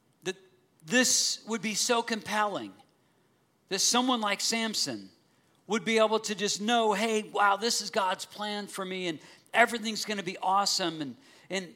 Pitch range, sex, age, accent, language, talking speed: 165-215 Hz, male, 50-69, American, English, 160 wpm